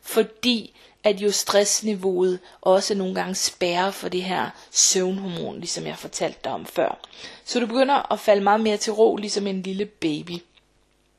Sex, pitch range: female, 190-225 Hz